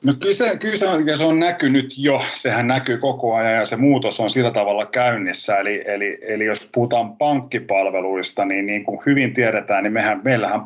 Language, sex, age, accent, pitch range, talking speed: Finnish, male, 30-49, native, 100-120 Hz, 175 wpm